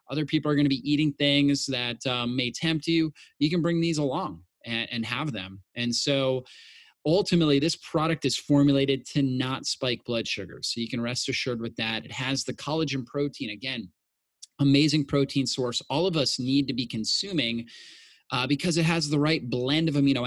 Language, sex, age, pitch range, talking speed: English, male, 30-49, 120-150 Hz, 195 wpm